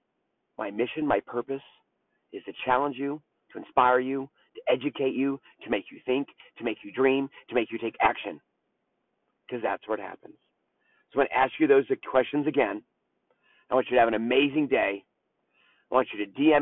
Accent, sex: American, male